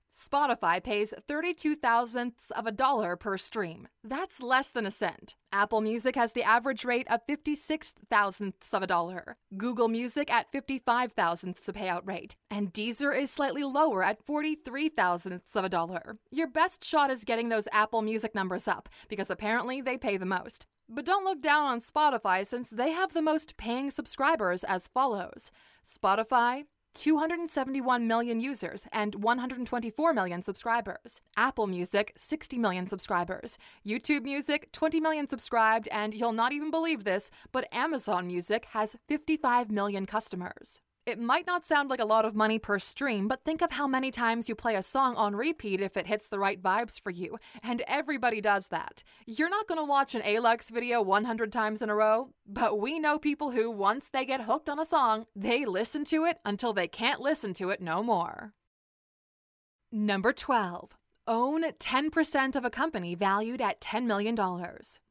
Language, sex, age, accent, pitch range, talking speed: English, female, 20-39, American, 205-280 Hz, 175 wpm